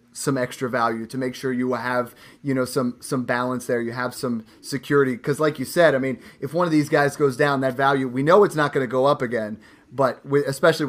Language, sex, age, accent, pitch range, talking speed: English, male, 30-49, American, 130-155 Hz, 250 wpm